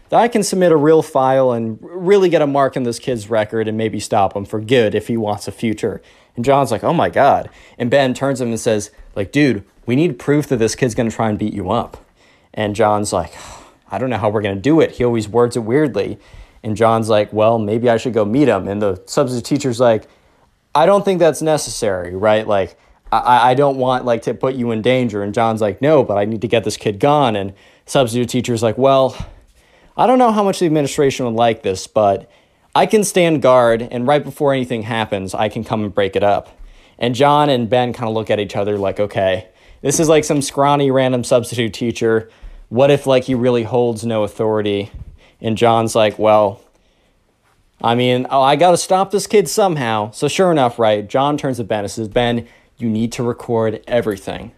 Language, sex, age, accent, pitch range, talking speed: English, male, 20-39, American, 110-140 Hz, 225 wpm